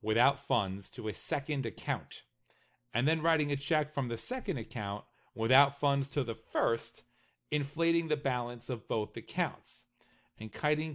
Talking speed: 155 wpm